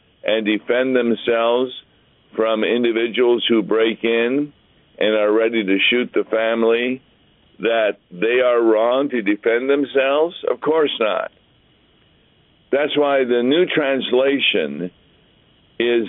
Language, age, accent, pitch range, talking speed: English, 50-69, American, 115-145 Hz, 115 wpm